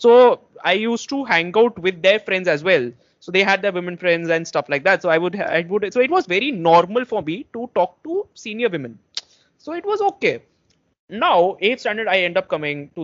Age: 20-39